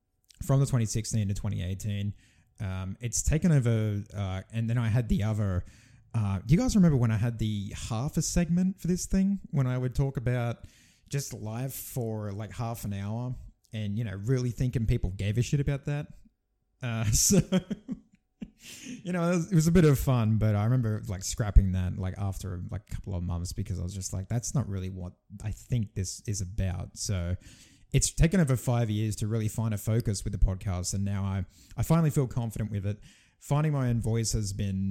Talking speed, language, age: 205 wpm, English, 20-39